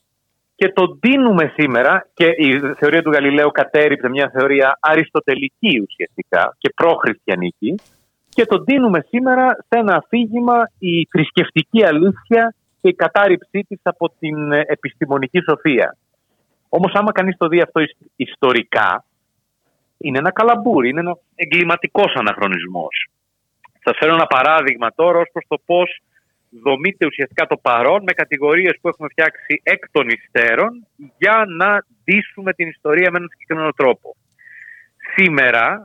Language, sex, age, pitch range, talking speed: Greek, male, 30-49, 145-200 Hz, 130 wpm